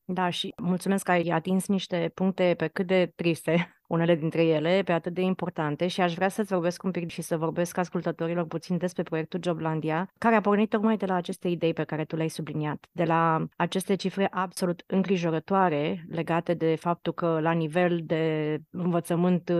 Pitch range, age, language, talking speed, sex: 165-190 Hz, 30-49, Romanian, 185 wpm, female